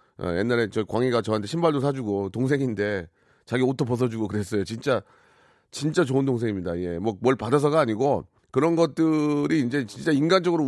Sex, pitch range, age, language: male, 110-155 Hz, 30-49, Korean